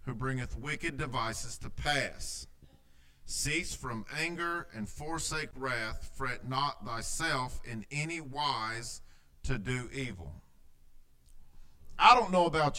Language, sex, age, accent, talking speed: English, male, 50-69, American, 115 wpm